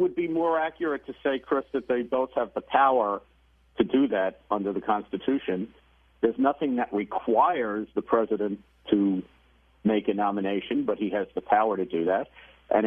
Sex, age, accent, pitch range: male, 50-69, American, 95-120 Hz